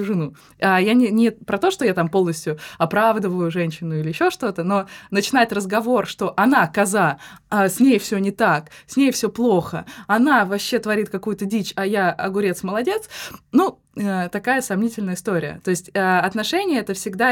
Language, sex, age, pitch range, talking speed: Russian, female, 20-39, 180-225 Hz, 175 wpm